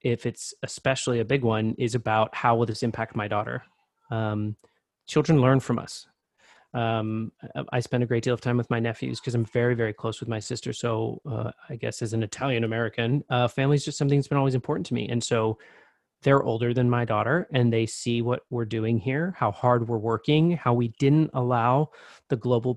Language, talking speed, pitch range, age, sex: English, 210 wpm, 115-130 Hz, 30-49, male